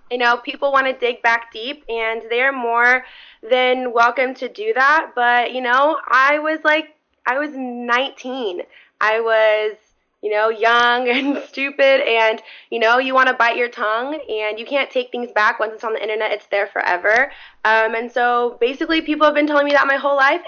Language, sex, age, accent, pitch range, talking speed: English, female, 20-39, American, 225-290 Hz, 200 wpm